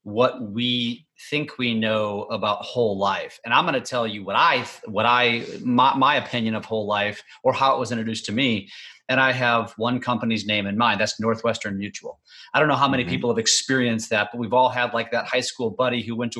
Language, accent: English, American